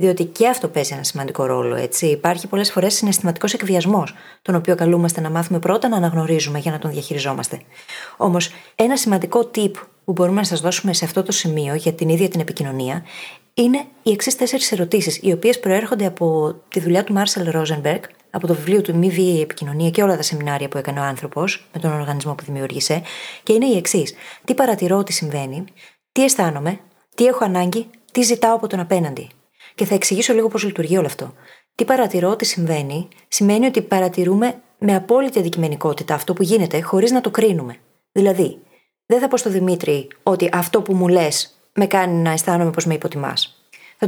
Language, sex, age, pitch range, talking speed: Greek, female, 30-49, 160-220 Hz, 190 wpm